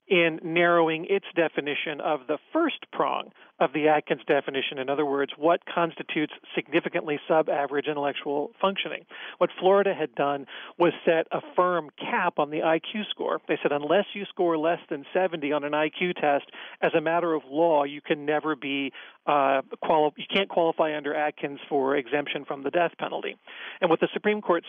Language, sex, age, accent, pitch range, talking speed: English, male, 40-59, American, 150-180 Hz, 185 wpm